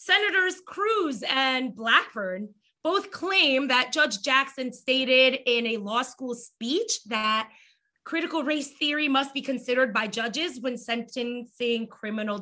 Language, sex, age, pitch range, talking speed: English, female, 20-39, 225-295 Hz, 130 wpm